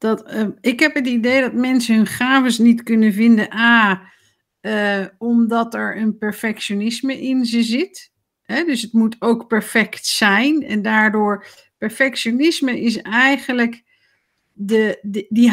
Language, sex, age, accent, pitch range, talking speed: Dutch, female, 50-69, Dutch, 210-255 Hz, 145 wpm